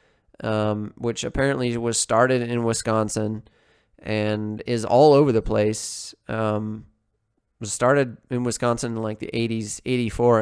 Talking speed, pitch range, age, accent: 140 wpm, 110-125 Hz, 20-39, American